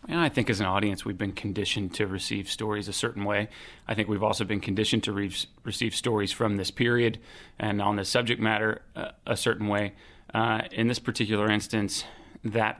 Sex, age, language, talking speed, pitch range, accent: male, 30-49, English, 200 wpm, 105-120 Hz, American